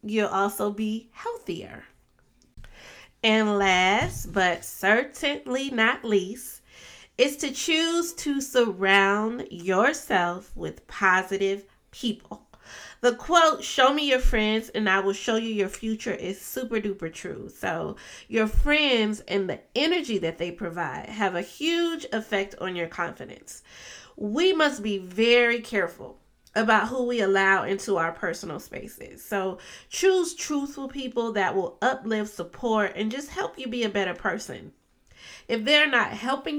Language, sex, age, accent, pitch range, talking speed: English, female, 30-49, American, 195-255 Hz, 140 wpm